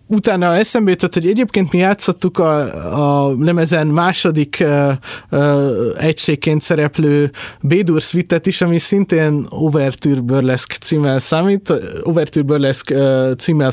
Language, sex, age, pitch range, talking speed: Hungarian, male, 20-39, 135-175 Hz, 115 wpm